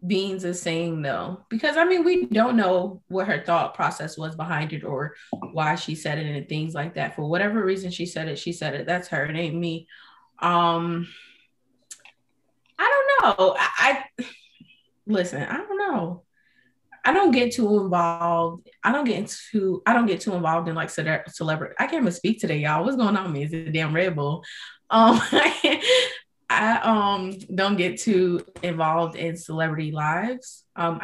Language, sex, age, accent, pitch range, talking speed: English, female, 20-39, American, 160-200 Hz, 185 wpm